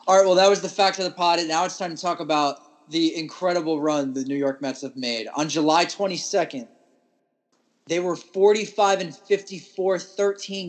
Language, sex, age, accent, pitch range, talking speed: English, male, 20-39, American, 150-190 Hz, 190 wpm